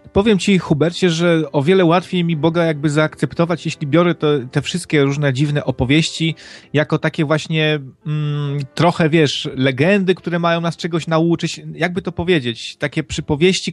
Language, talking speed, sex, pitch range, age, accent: Polish, 155 wpm, male, 145-180 Hz, 30-49, native